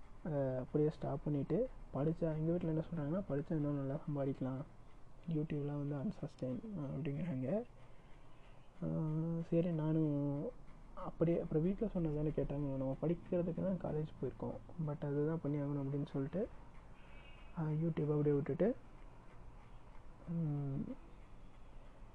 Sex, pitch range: male, 140-165 Hz